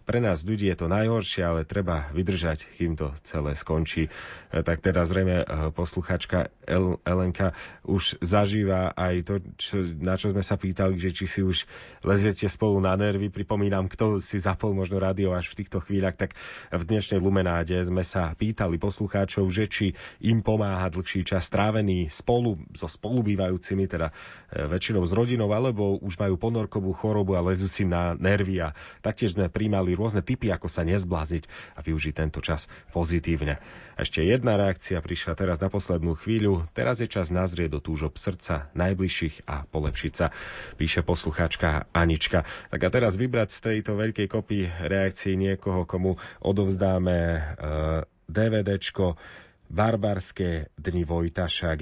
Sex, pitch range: male, 85-100 Hz